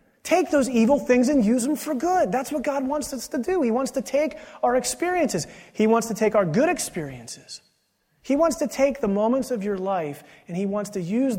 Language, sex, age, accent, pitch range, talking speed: English, male, 30-49, American, 175-245 Hz, 225 wpm